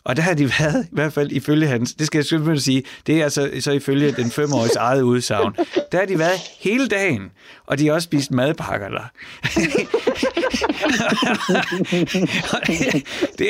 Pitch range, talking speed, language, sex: 135-185 Hz, 170 wpm, Danish, male